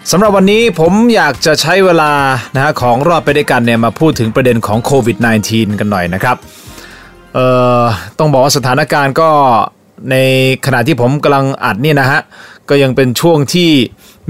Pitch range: 115-140 Hz